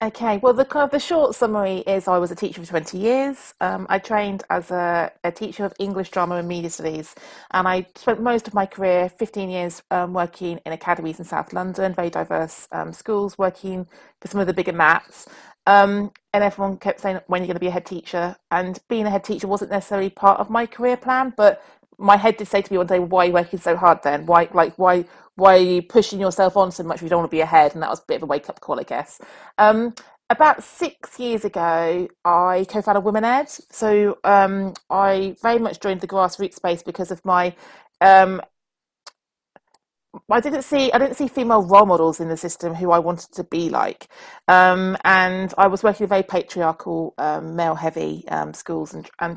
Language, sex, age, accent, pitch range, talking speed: English, female, 30-49, British, 175-210 Hz, 220 wpm